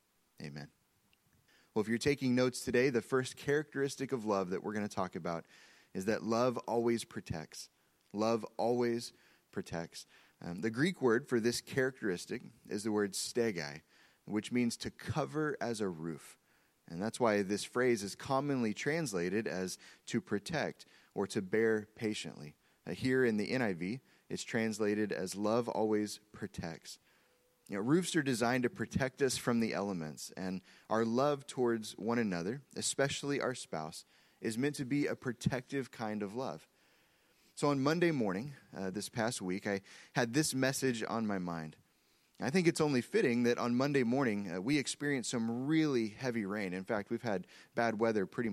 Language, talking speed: English, 165 wpm